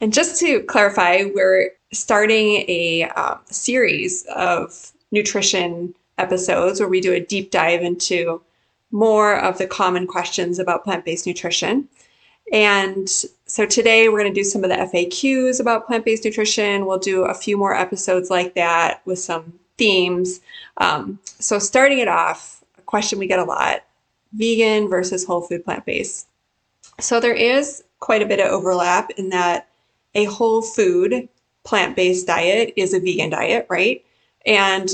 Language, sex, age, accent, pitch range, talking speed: English, female, 30-49, American, 185-240 Hz, 155 wpm